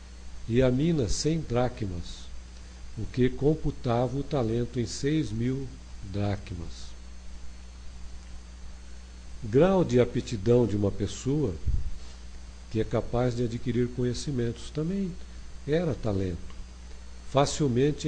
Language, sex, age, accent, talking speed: Portuguese, male, 50-69, Brazilian, 100 wpm